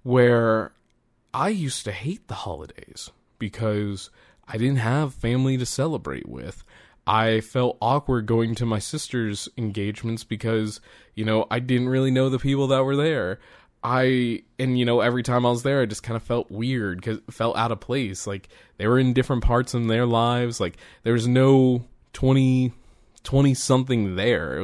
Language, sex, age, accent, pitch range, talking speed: English, male, 20-39, American, 105-130 Hz, 175 wpm